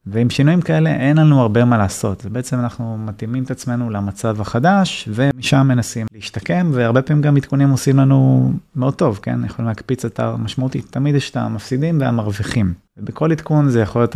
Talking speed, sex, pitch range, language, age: 175 wpm, male, 115-135 Hz, Hebrew, 30-49